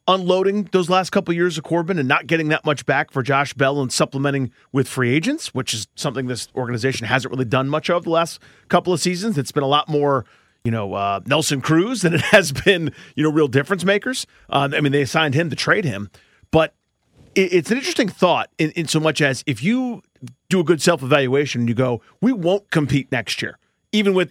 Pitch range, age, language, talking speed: 135-175 Hz, 30-49, English, 220 wpm